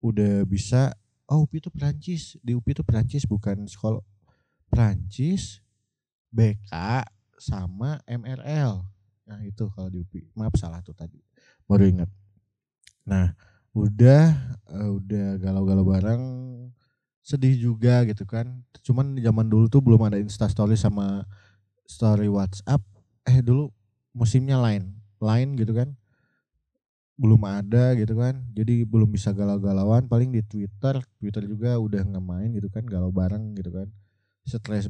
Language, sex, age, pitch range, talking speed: Indonesian, male, 20-39, 100-120 Hz, 130 wpm